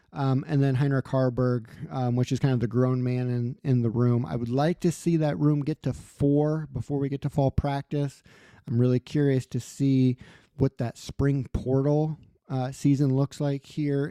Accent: American